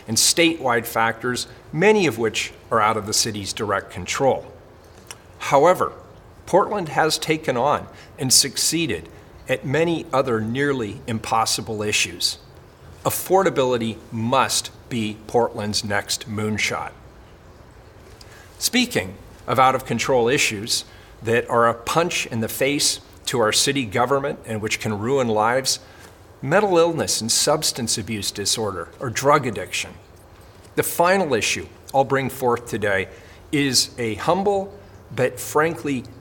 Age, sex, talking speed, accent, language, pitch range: 40-59, male, 125 wpm, American, English, 105-135 Hz